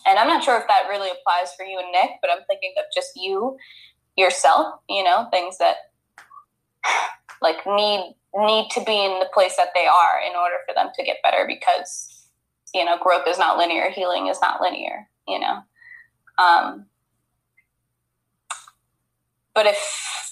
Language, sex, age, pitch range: English, female, 10-29, 180-210 Hz